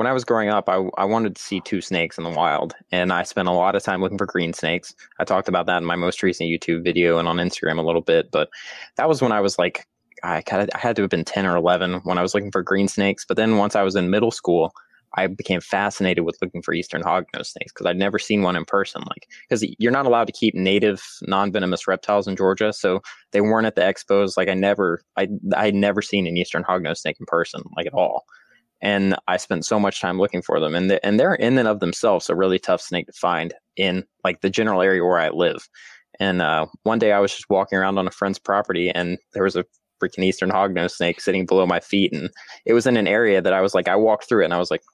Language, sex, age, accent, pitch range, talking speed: English, male, 20-39, American, 90-105 Hz, 265 wpm